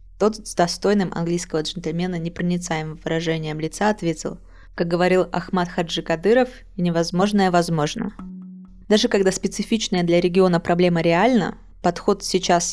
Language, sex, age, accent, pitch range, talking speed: Russian, female, 20-39, native, 165-190 Hz, 125 wpm